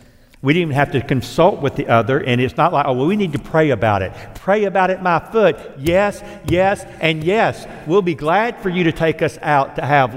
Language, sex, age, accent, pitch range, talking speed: English, male, 60-79, American, 130-170 Hz, 240 wpm